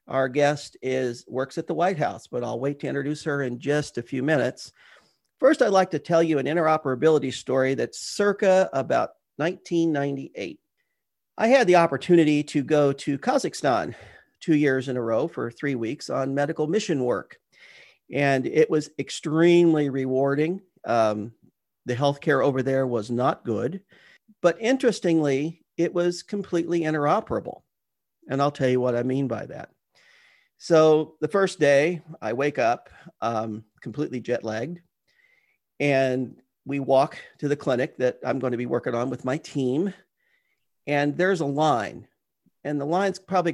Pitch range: 130-170 Hz